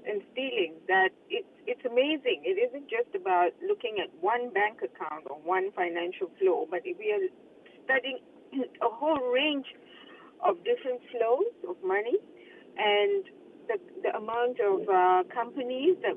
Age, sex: 50-69, female